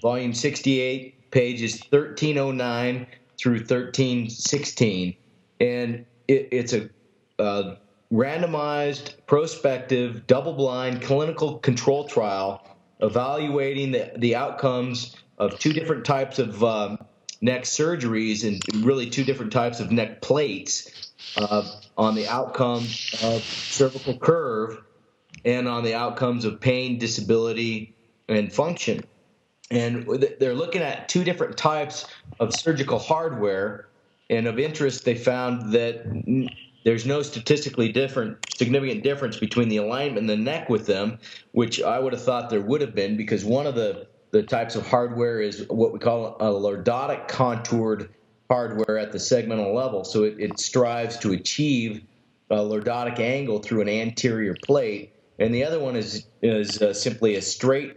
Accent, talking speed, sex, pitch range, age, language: American, 140 wpm, male, 110-135 Hz, 30-49, English